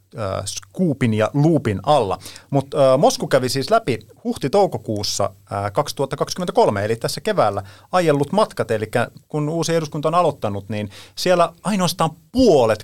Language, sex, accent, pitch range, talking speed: Finnish, male, native, 110-145 Hz, 135 wpm